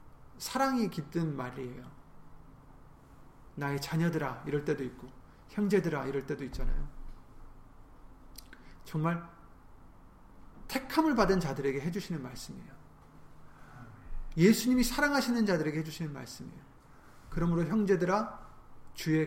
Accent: native